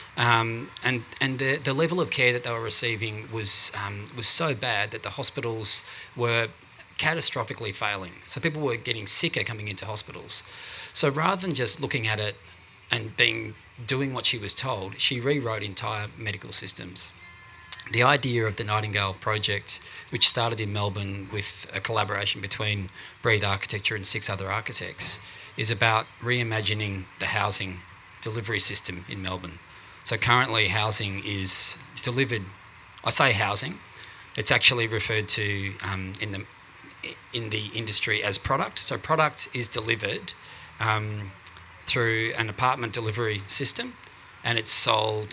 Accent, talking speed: Australian, 150 wpm